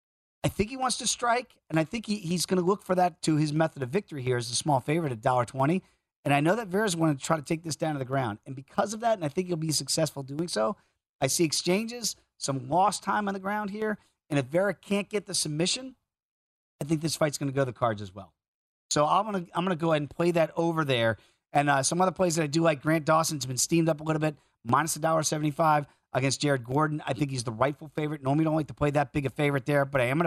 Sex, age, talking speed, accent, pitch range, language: male, 40-59, 280 wpm, American, 140-170 Hz, English